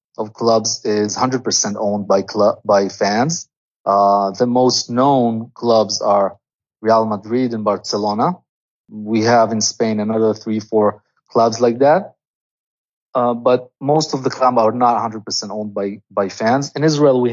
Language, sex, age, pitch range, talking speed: English, male, 30-49, 110-130 Hz, 155 wpm